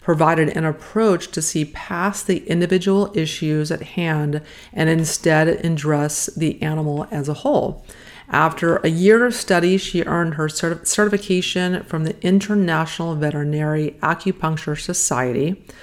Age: 40-59